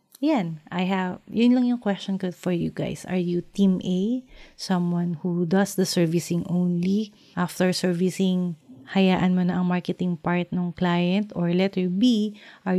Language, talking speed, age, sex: English, 170 wpm, 30-49, female